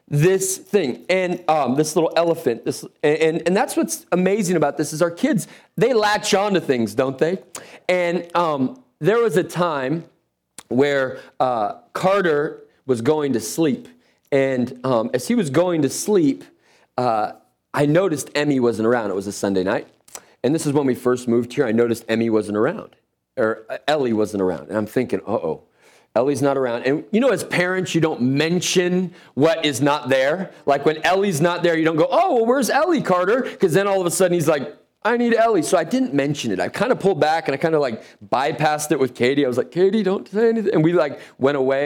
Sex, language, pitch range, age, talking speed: male, English, 140-195 Hz, 40-59, 210 wpm